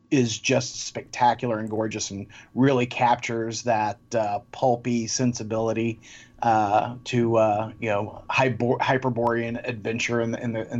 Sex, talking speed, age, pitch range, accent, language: male, 135 wpm, 40-59, 115-130 Hz, American, English